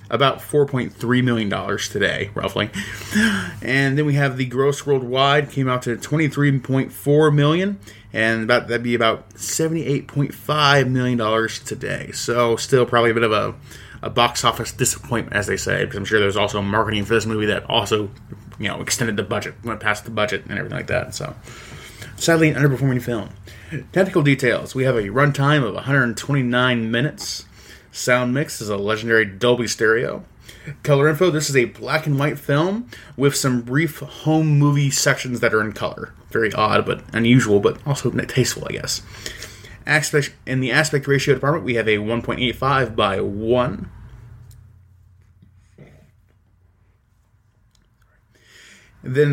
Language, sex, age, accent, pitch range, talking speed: English, male, 20-39, American, 110-140 Hz, 155 wpm